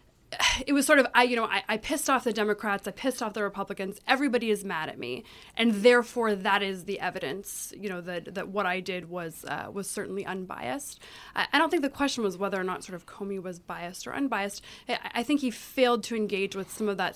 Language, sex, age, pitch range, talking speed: English, female, 20-39, 200-250 Hz, 240 wpm